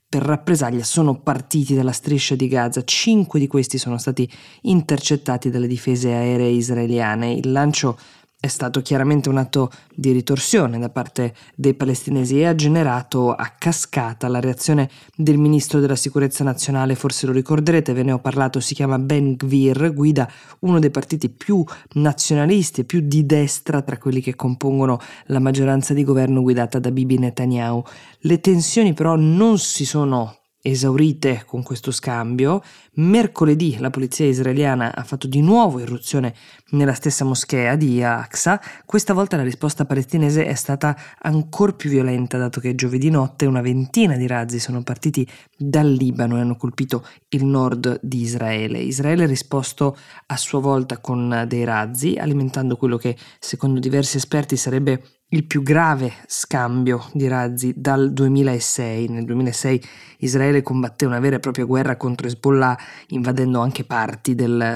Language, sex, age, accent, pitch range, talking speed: Italian, female, 20-39, native, 125-150 Hz, 155 wpm